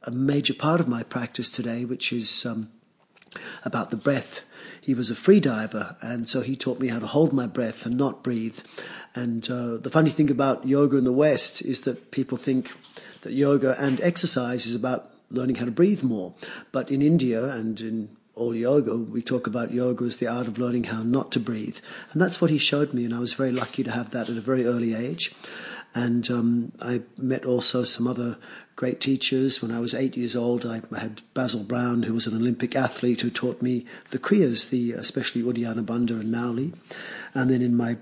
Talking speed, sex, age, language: 215 wpm, male, 50-69, English